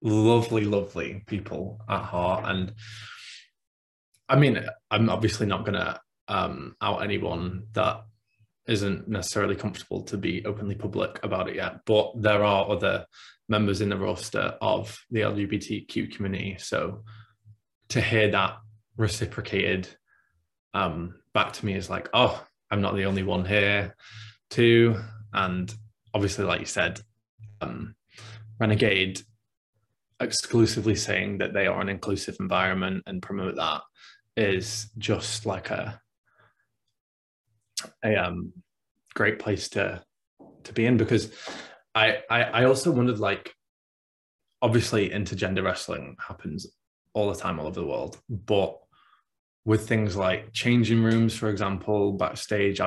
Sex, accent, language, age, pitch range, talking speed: male, British, English, 20-39, 95-110 Hz, 130 wpm